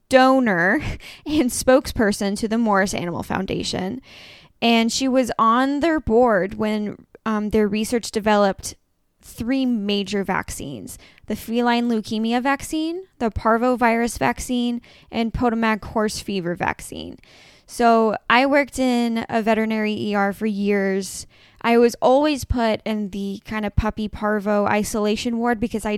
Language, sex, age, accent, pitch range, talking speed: English, female, 10-29, American, 195-235 Hz, 130 wpm